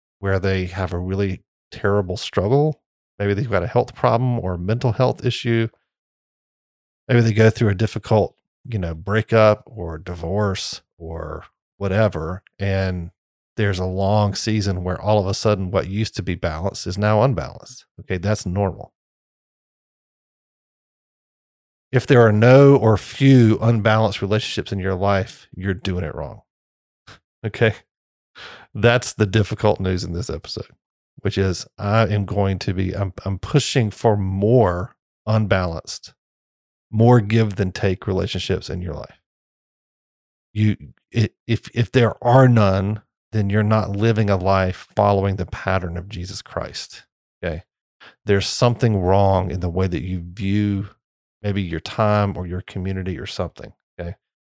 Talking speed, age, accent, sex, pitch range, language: 145 wpm, 40-59, American, male, 95-110 Hz, English